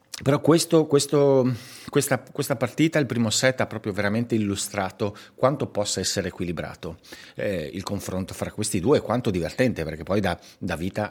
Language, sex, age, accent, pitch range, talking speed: Italian, male, 50-69, native, 90-115 Hz, 155 wpm